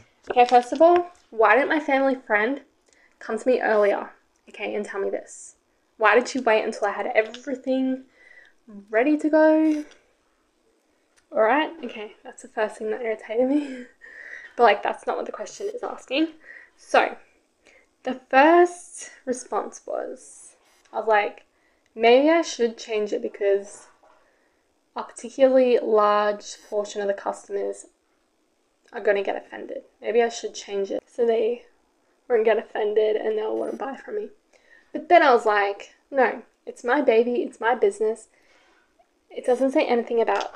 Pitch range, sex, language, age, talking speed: 220-345 Hz, female, English, 10-29, 160 wpm